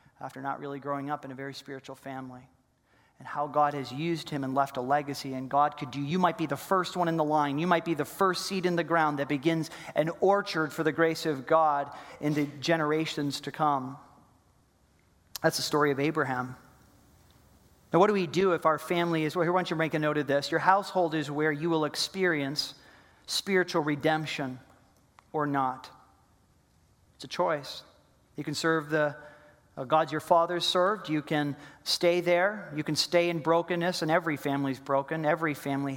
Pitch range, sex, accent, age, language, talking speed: 140-165 Hz, male, American, 40-59, English, 195 wpm